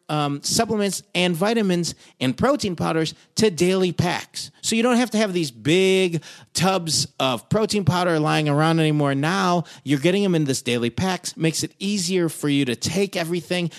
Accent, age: American, 40-59